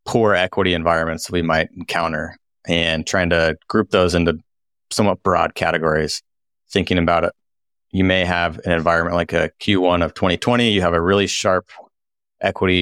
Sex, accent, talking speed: male, American, 160 wpm